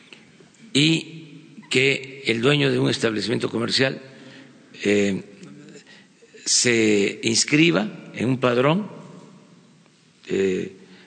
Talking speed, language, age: 80 wpm, Spanish, 50-69